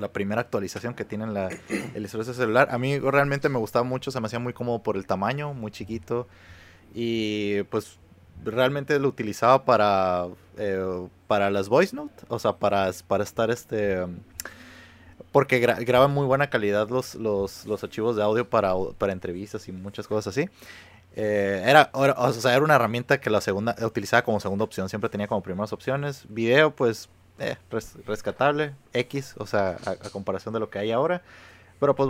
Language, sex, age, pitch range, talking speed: Spanish, male, 20-39, 100-130 Hz, 180 wpm